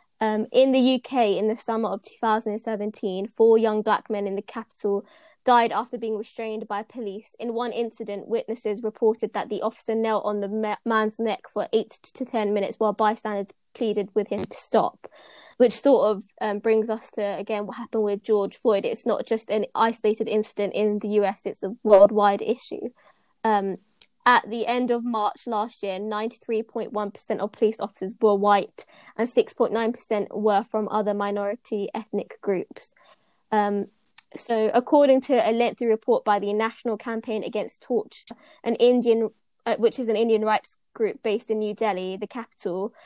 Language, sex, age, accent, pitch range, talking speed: English, female, 20-39, British, 210-230 Hz, 170 wpm